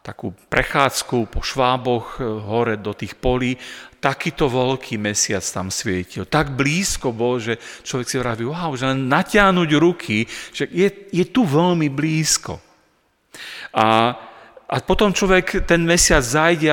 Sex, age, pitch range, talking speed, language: male, 40-59, 110-150 Hz, 135 wpm, Slovak